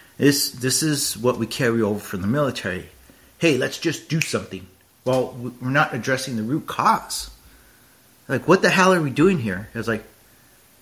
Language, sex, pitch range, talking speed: English, male, 110-155 Hz, 175 wpm